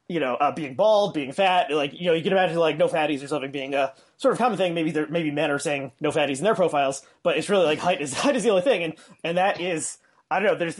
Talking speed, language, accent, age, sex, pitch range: 300 wpm, English, American, 30-49, male, 140-175 Hz